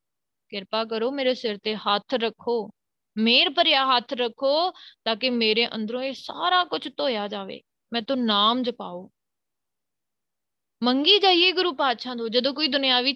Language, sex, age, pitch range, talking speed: Punjabi, female, 20-39, 220-280 Hz, 135 wpm